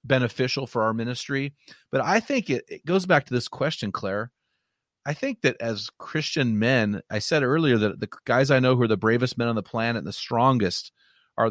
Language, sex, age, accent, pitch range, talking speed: English, male, 40-59, American, 125-165 Hz, 215 wpm